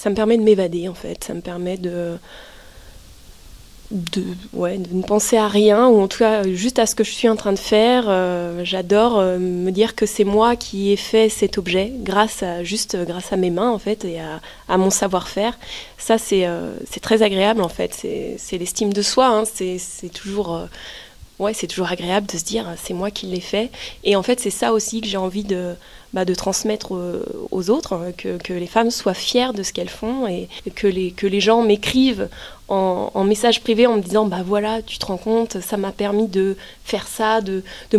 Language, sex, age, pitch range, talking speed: French, female, 20-39, 185-220 Hz, 225 wpm